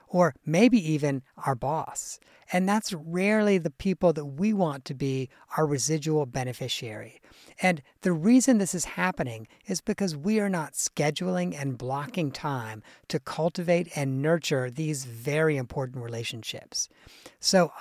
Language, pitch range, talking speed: English, 130-175 Hz, 140 wpm